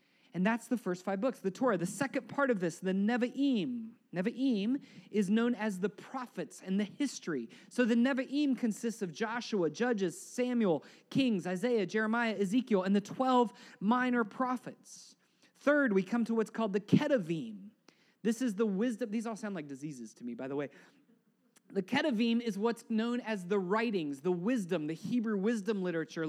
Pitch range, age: 195-255 Hz, 30-49